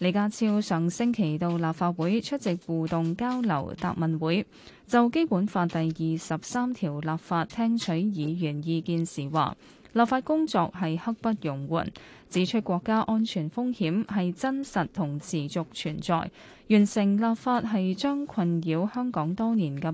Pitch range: 165-225 Hz